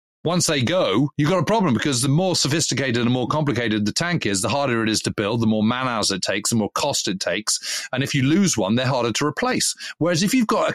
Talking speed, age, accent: 270 wpm, 40-59, British